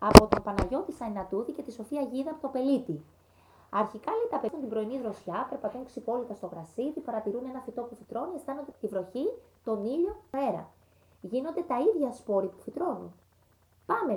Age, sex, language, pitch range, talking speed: 20-39, female, Greek, 195-275 Hz, 180 wpm